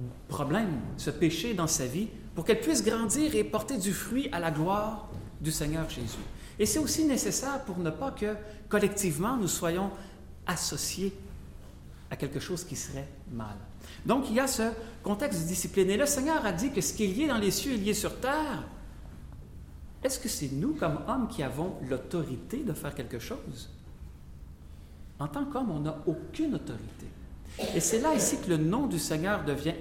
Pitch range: 150-245 Hz